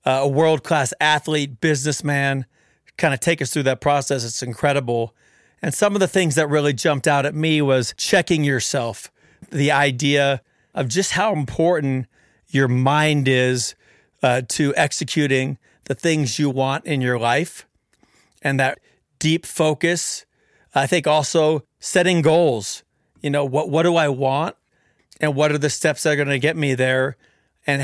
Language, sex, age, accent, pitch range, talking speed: English, male, 40-59, American, 135-155 Hz, 165 wpm